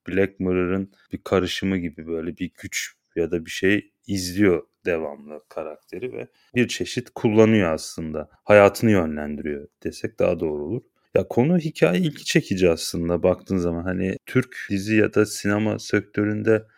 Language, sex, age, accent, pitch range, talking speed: Turkish, male, 30-49, native, 85-110 Hz, 145 wpm